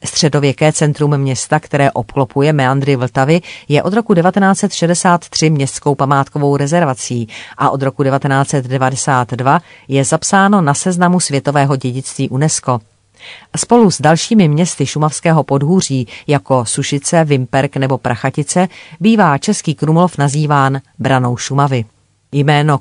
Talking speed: 115 wpm